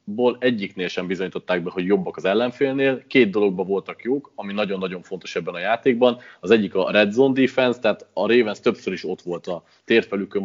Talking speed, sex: 195 wpm, male